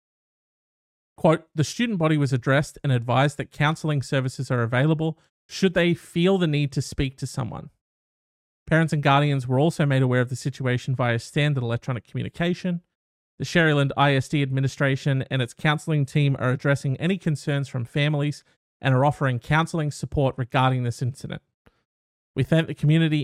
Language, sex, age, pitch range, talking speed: English, male, 30-49, 125-155 Hz, 160 wpm